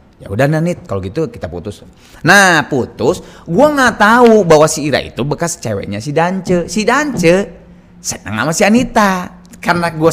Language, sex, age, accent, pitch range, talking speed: Indonesian, male, 30-49, native, 120-180 Hz, 165 wpm